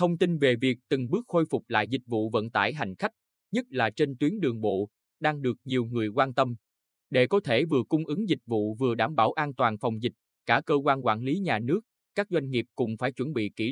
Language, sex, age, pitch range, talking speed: Vietnamese, male, 20-39, 115-155 Hz, 250 wpm